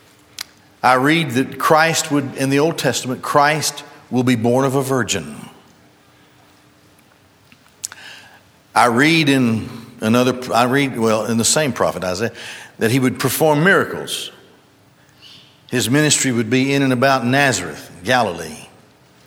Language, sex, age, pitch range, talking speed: English, male, 60-79, 120-150 Hz, 130 wpm